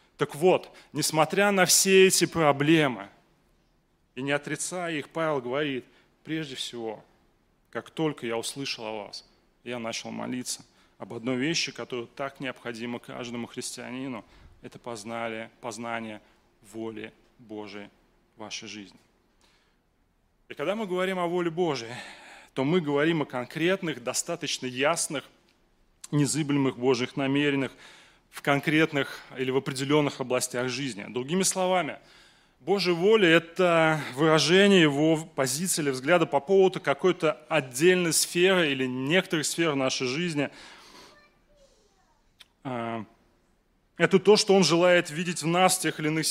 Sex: male